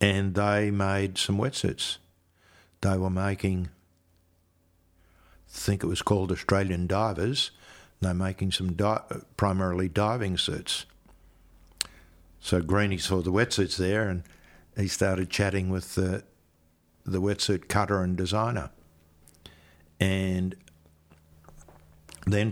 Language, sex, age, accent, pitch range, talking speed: English, male, 60-79, Australian, 80-100 Hz, 110 wpm